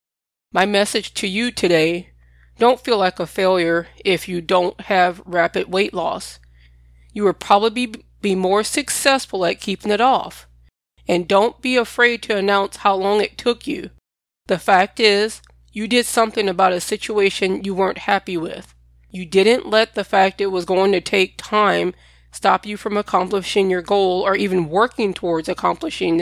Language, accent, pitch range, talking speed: English, American, 175-210 Hz, 165 wpm